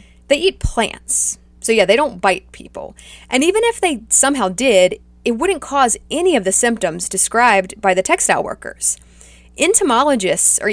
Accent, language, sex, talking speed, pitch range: American, English, female, 160 wpm, 180-245 Hz